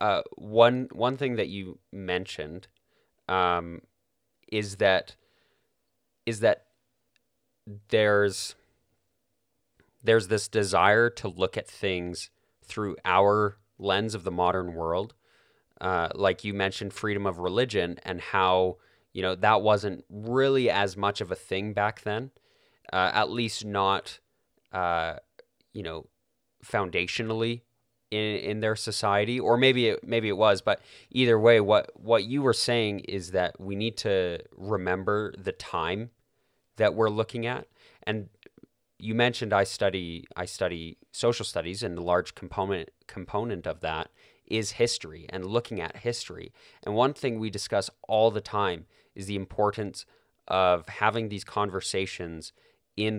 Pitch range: 95-115 Hz